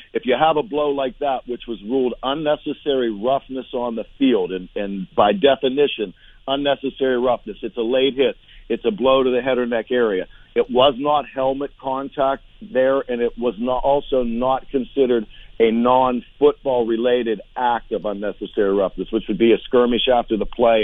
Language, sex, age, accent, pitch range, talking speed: English, male, 50-69, American, 115-135 Hz, 175 wpm